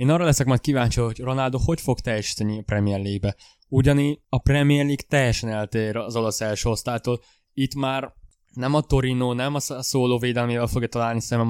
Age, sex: 20-39, male